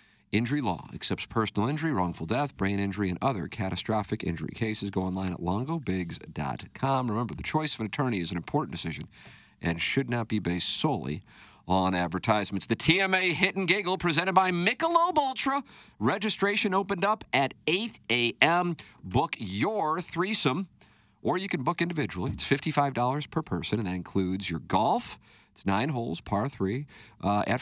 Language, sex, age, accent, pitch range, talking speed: English, male, 50-69, American, 95-140 Hz, 165 wpm